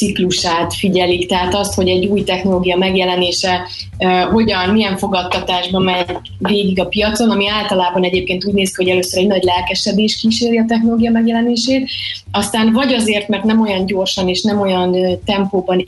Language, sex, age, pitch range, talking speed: Hungarian, female, 20-39, 180-210 Hz, 165 wpm